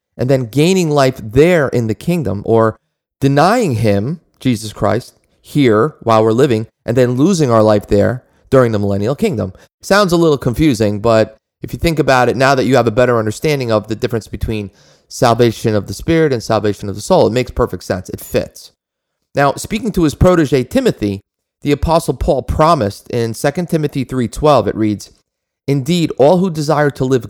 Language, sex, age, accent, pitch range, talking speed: English, male, 30-49, American, 110-135 Hz, 185 wpm